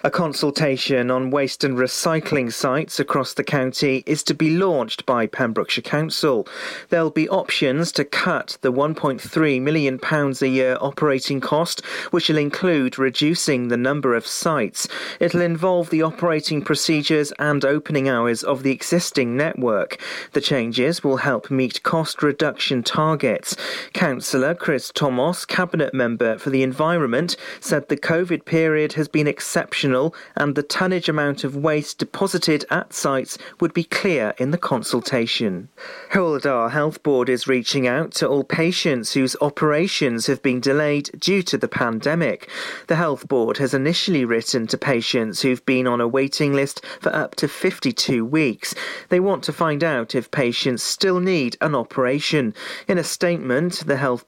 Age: 40-59